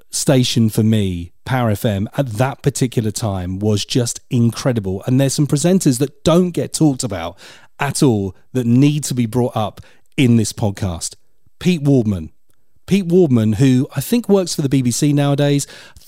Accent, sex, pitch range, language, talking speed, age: British, male, 110-145 Hz, English, 170 wpm, 40-59